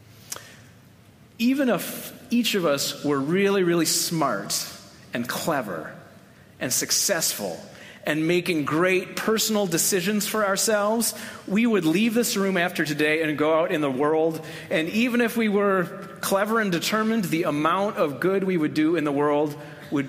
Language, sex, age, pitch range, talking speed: English, male, 40-59, 145-200 Hz, 155 wpm